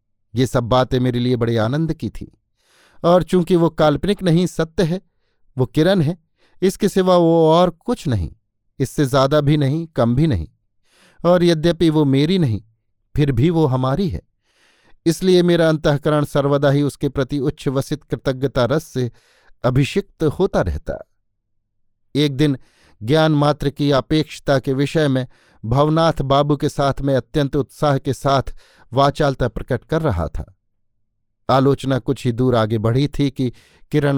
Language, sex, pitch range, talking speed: Hindi, male, 120-155 Hz, 155 wpm